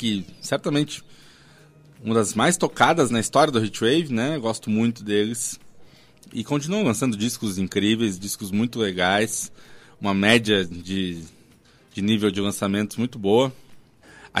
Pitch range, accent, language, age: 105-155 Hz, Brazilian, Portuguese, 20-39